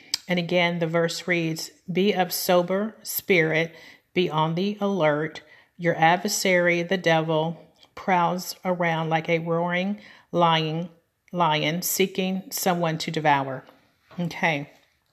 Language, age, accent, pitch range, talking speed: English, 40-59, American, 160-185 Hz, 110 wpm